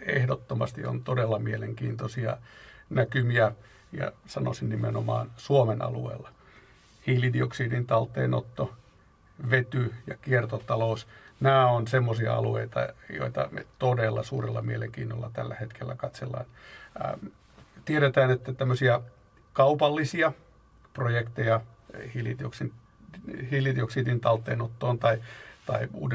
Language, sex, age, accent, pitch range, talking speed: Finnish, male, 60-79, native, 110-130 Hz, 85 wpm